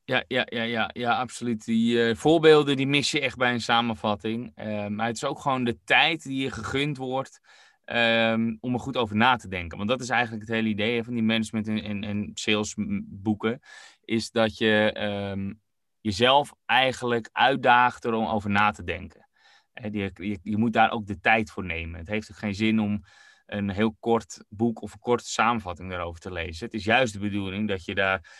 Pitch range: 105-120 Hz